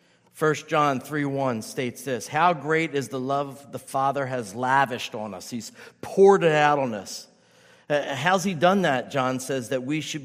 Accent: American